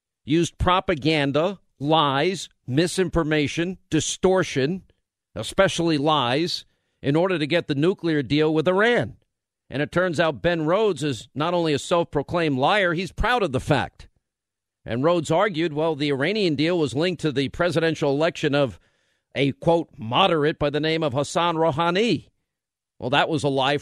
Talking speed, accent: 155 wpm, American